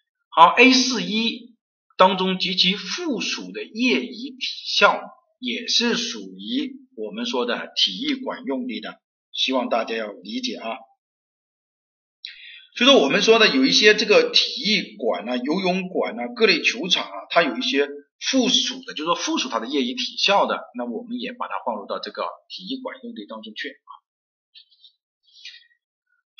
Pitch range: 185-265 Hz